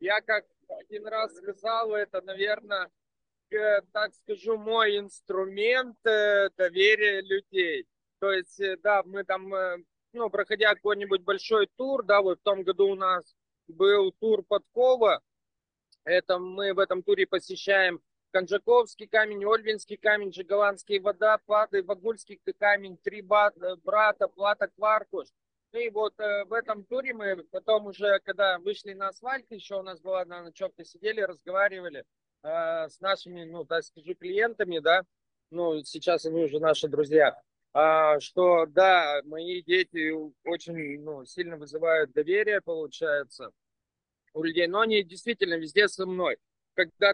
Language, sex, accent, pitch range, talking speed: Russian, male, native, 180-210 Hz, 140 wpm